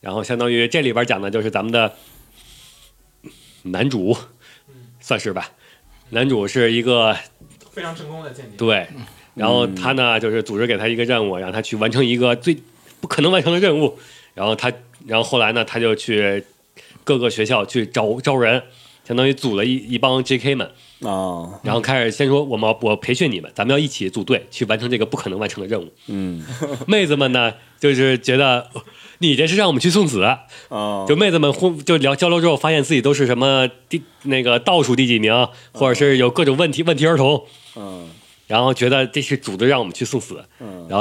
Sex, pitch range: male, 115-140 Hz